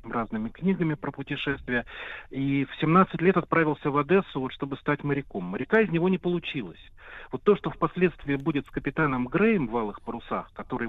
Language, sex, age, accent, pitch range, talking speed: Russian, male, 40-59, native, 135-185 Hz, 175 wpm